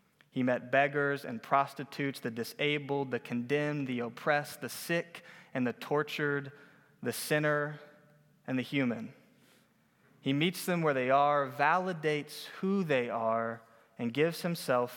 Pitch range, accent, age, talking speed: 125-155 Hz, American, 20-39, 135 wpm